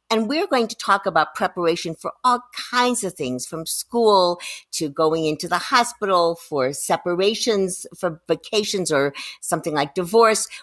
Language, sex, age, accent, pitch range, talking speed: English, female, 50-69, American, 165-225 Hz, 150 wpm